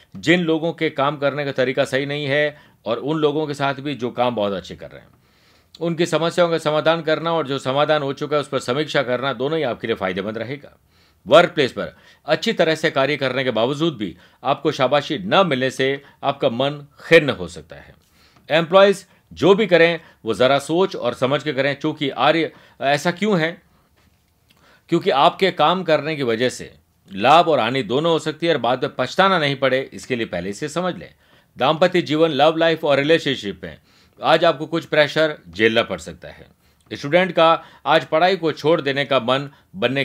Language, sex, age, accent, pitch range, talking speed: Hindi, male, 50-69, native, 125-160 Hz, 200 wpm